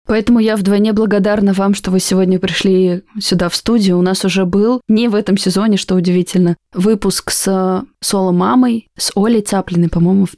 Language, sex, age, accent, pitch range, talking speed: Russian, female, 20-39, native, 175-200 Hz, 180 wpm